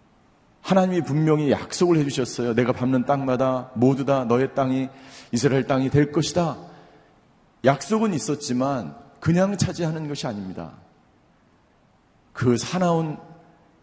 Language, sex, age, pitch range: Korean, male, 40-59, 125-160 Hz